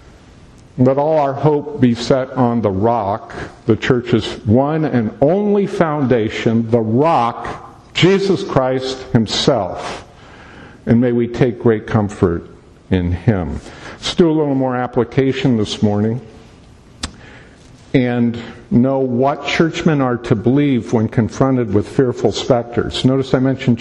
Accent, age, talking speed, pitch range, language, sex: American, 50-69, 130 wpm, 115-145 Hz, English, male